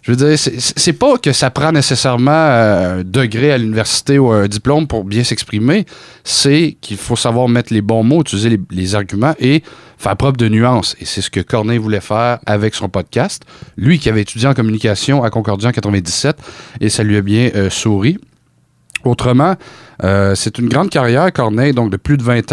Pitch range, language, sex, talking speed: 105-135 Hz, French, male, 200 wpm